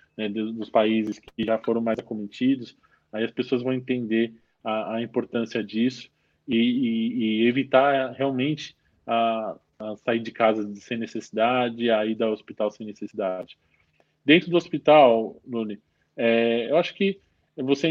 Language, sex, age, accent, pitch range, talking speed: Portuguese, male, 20-39, Brazilian, 110-125 Hz, 145 wpm